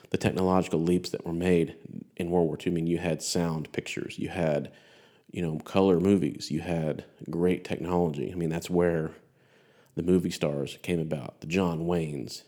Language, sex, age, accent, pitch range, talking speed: English, male, 40-59, American, 80-90 Hz, 185 wpm